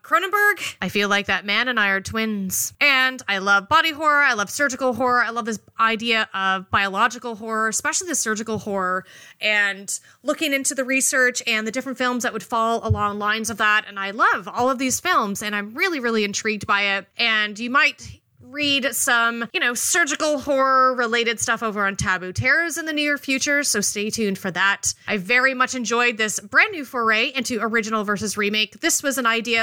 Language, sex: English, female